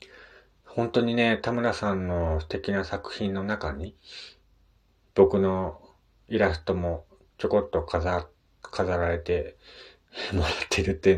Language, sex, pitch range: Japanese, male, 80-110 Hz